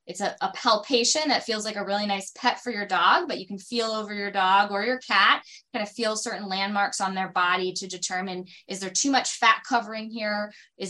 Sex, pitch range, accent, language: female, 190-250 Hz, American, English